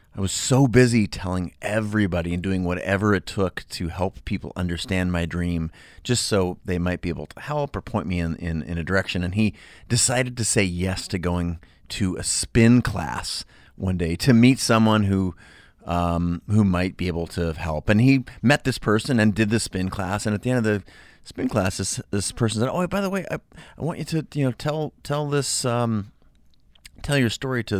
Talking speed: 215 wpm